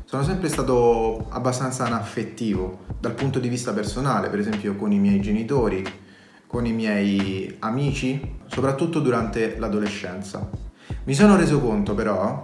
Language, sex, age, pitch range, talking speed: Italian, male, 30-49, 105-140 Hz, 135 wpm